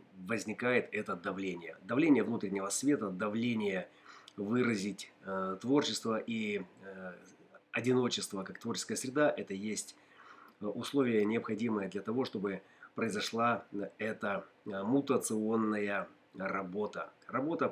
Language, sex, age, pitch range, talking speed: Russian, male, 30-49, 100-130 Hz, 90 wpm